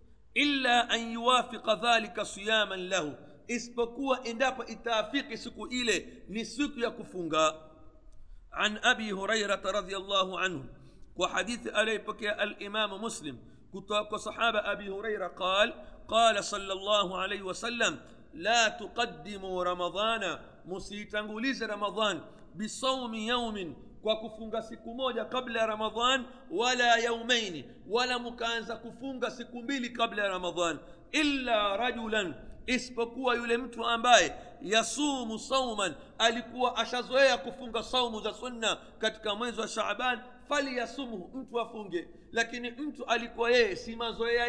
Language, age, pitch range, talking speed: Swahili, 50-69, 210-245 Hz, 115 wpm